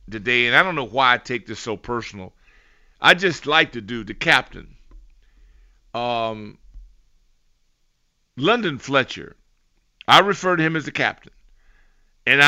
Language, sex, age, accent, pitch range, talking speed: English, male, 50-69, American, 105-145 Hz, 140 wpm